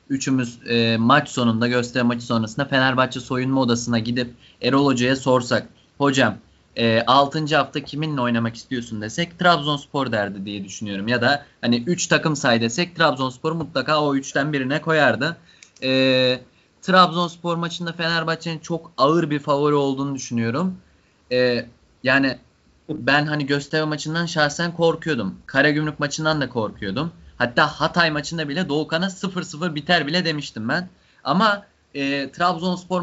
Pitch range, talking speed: 125-160 Hz, 135 wpm